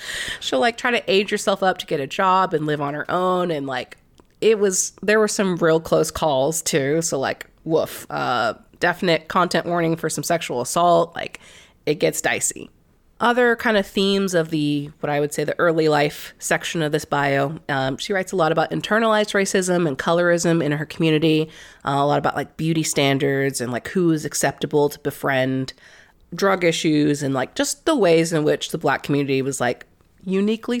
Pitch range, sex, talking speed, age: 145-185 Hz, female, 195 wpm, 30-49